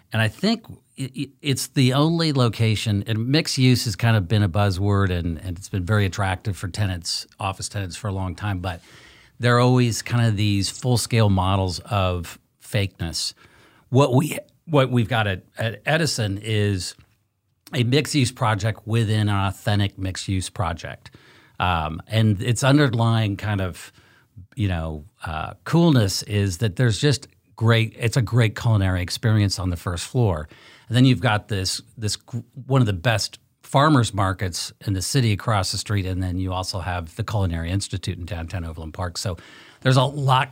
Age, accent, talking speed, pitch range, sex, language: 50-69, American, 180 wpm, 95-120 Hz, male, English